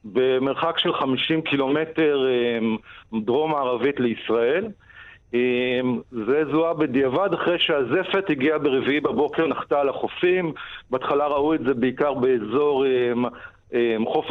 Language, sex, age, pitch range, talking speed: Hebrew, male, 50-69, 135-170 Hz, 100 wpm